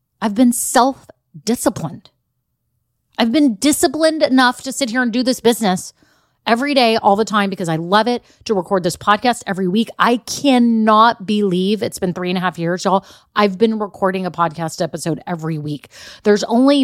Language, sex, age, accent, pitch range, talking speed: English, female, 30-49, American, 160-220 Hz, 180 wpm